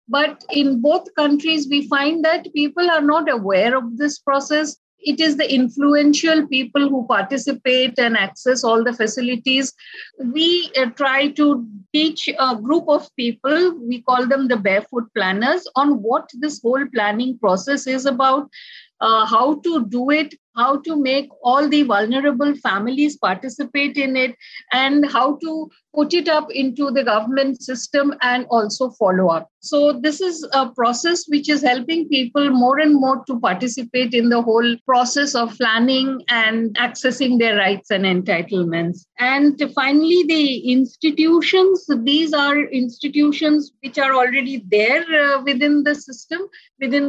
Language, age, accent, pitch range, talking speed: English, 50-69, Indian, 245-295 Hz, 155 wpm